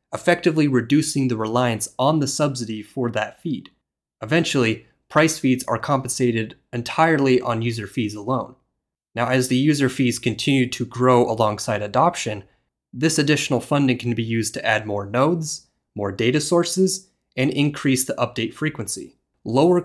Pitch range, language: 115-150 Hz, English